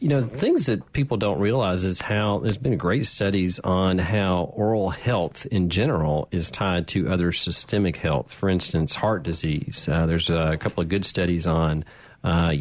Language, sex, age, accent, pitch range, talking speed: English, male, 40-59, American, 85-100 Hz, 185 wpm